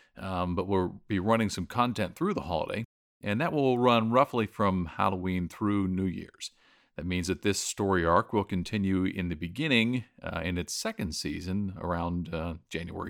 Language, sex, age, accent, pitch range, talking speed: English, male, 50-69, American, 90-115 Hz, 180 wpm